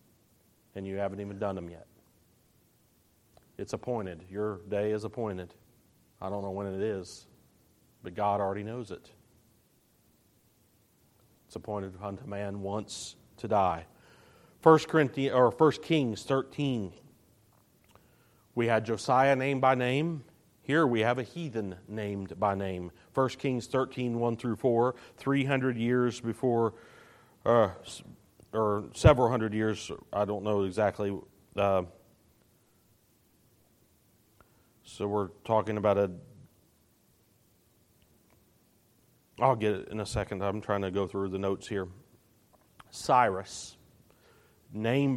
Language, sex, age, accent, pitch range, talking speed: English, male, 40-59, American, 100-130 Hz, 120 wpm